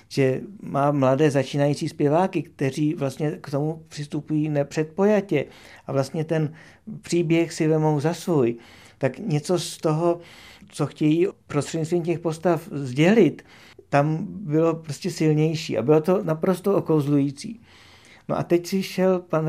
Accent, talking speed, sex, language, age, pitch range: native, 135 wpm, male, Czech, 50-69, 135-170 Hz